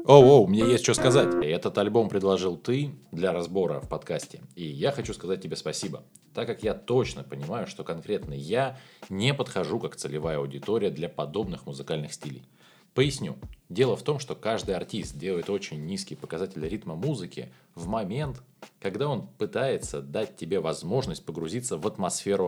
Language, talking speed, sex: Russian, 170 wpm, male